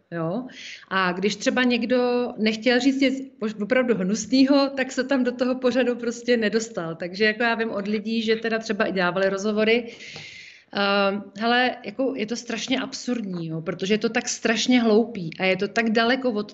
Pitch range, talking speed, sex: 195-235 Hz, 180 wpm, female